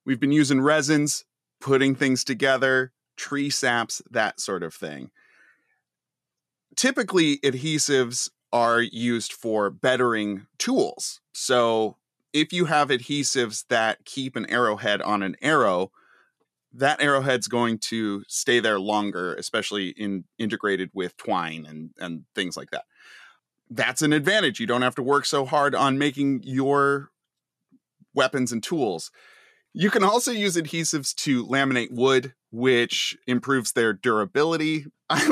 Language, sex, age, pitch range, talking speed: English, male, 30-49, 110-145 Hz, 135 wpm